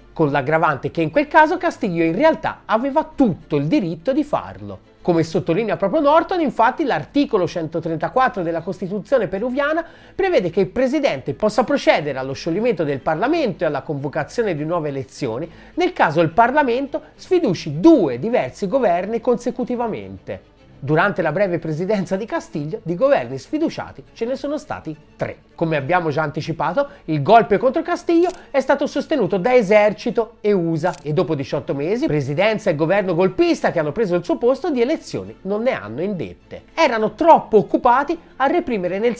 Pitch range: 160-260 Hz